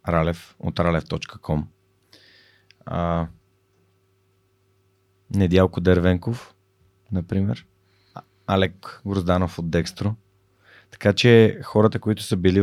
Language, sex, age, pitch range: Bulgarian, male, 30-49, 85-100 Hz